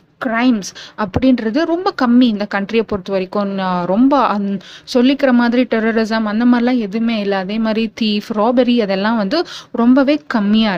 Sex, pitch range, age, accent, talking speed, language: female, 200-275 Hz, 20-39, native, 130 wpm, Tamil